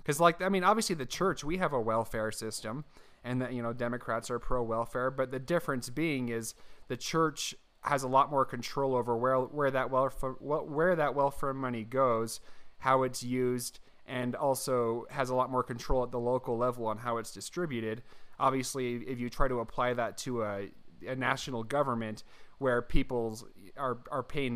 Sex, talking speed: male, 190 wpm